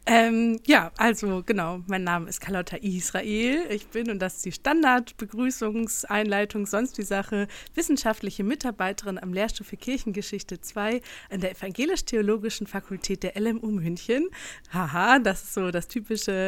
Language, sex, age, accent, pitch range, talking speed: German, female, 30-49, German, 190-230 Hz, 140 wpm